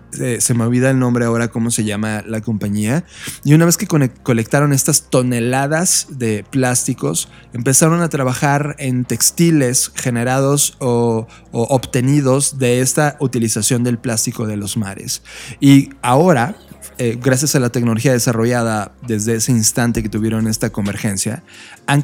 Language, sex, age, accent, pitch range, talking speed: Spanish, male, 20-39, Mexican, 115-140 Hz, 145 wpm